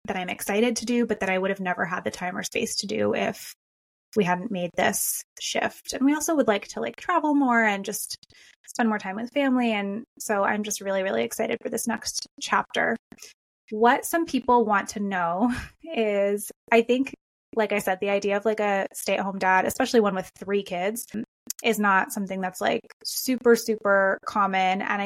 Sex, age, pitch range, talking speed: female, 20-39, 195-240 Hz, 200 wpm